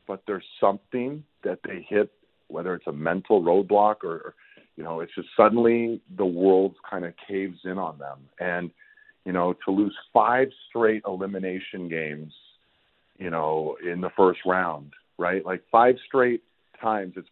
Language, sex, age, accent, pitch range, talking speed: English, male, 40-59, American, 80-100 Hz, 160 wpm